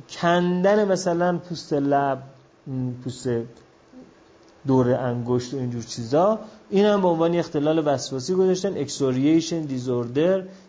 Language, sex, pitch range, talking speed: Persian, male, 115-150 Hz, 110 wpm